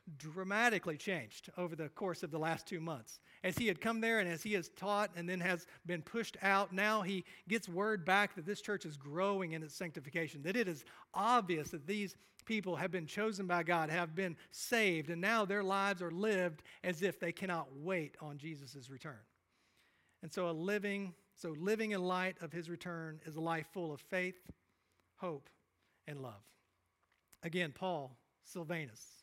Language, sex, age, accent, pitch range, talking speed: English, male, 40-59, American, 160-200 Hz, 185 wpm